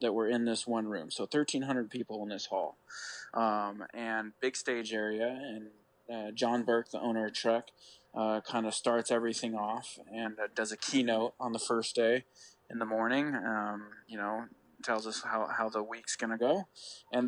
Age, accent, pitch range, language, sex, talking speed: 20-39, American, 110-130 Hz, English, male, 195 wpm